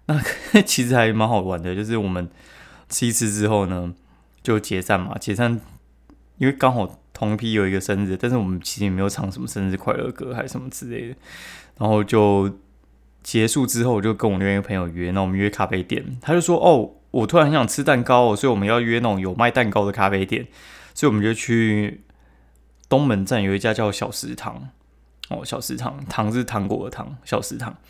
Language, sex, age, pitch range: Chinese, male, 20-39, 95-120 Hz